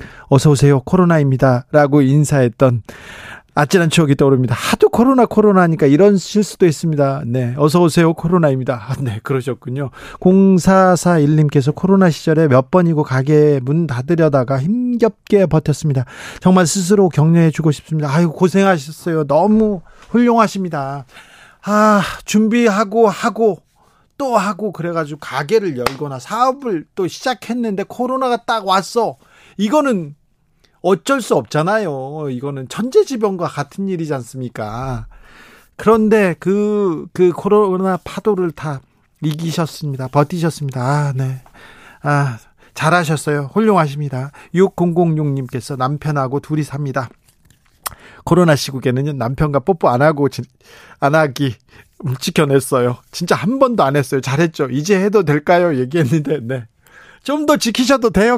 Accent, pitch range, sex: native, 140-205 Hz, male